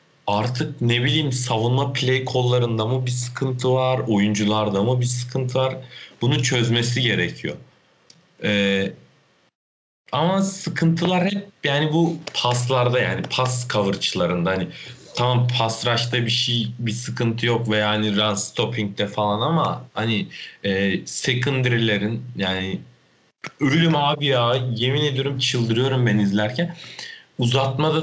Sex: male